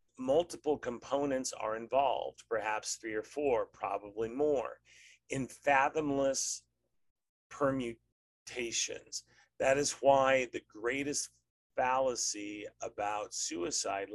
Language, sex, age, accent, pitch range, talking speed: English, male, 40-59, American, 95-135 Hz, 90 wpm